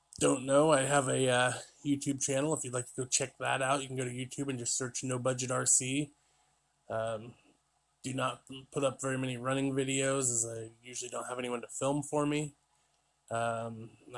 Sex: male